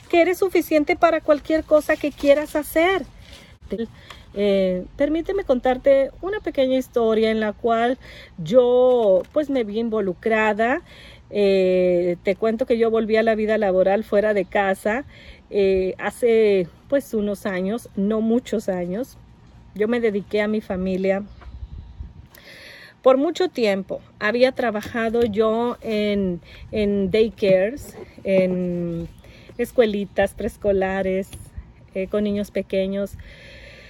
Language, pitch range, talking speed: Spanish, 200-255 Hz, 120 wpm